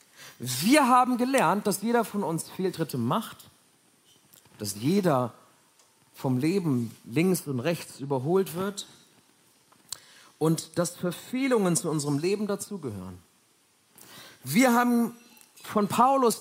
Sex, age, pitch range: male, 50-69, 140-190 Hz